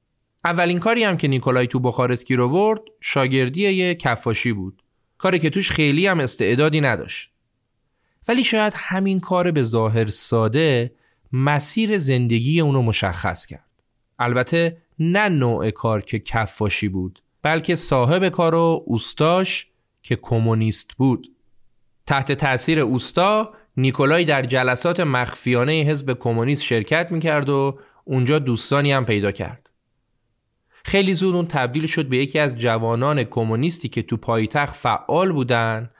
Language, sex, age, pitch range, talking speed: Persian, male, 30-49, 115-160 Hz, 130 wpm